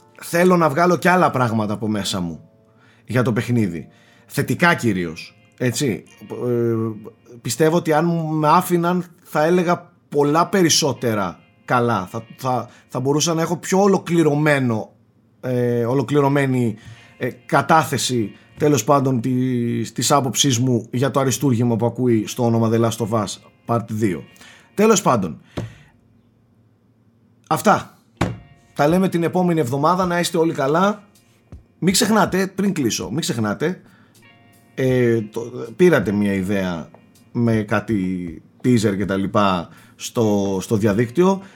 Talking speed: 120 wpm